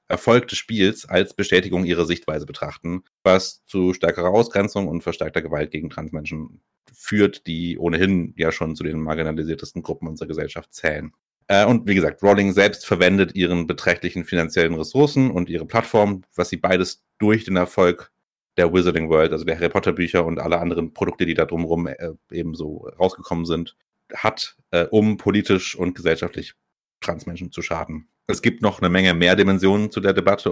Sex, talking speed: male, 165 wpm